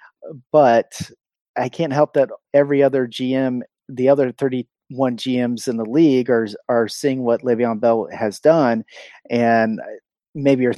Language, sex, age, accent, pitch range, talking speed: English, male, 30-49, American, 115-140 Hz, 145 wpm